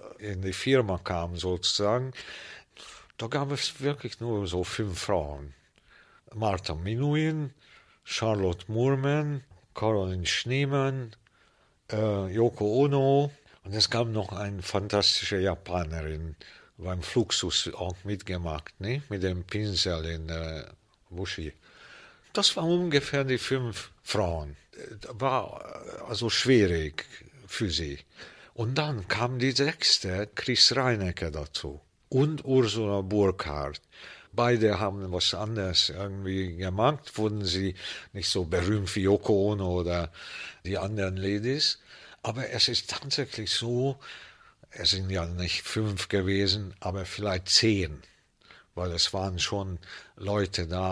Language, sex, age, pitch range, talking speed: German, male, 50-69, 90-115 Hz, 120 wpm